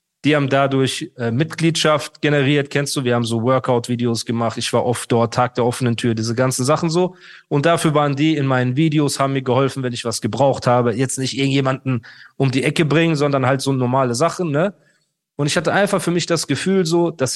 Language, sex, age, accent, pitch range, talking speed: German, male, 30-49, German, 125-160 Hz, 220 wpm